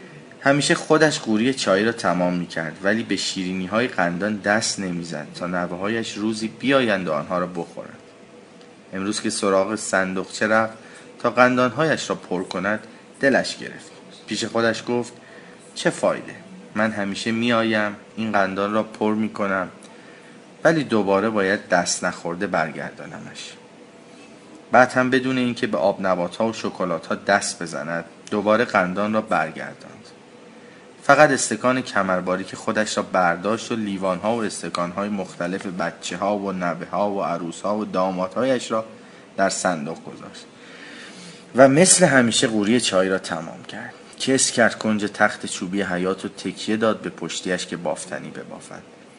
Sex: male